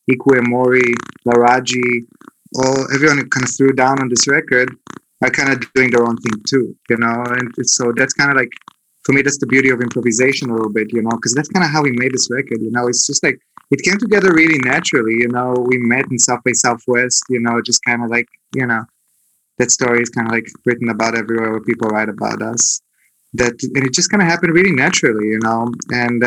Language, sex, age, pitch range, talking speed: English, male, 20-39, 120-135 Hz, 230 wpm